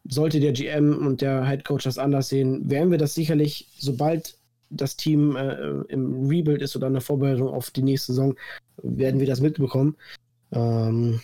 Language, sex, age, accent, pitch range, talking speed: German, male, 20-39, German, 125-145 Hz, 175 wpm